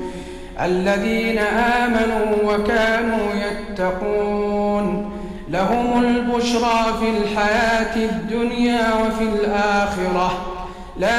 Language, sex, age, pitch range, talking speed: Arabic, male, 50-69, 205-235 Hz, 65 wpm